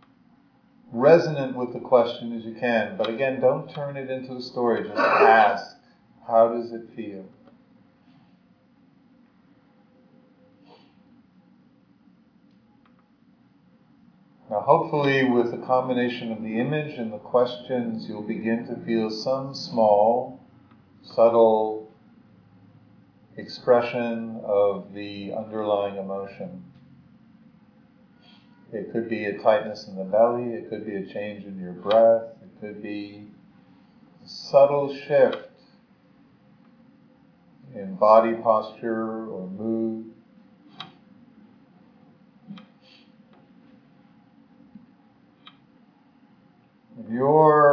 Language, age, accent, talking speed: English, 40-59, American, 90 wpm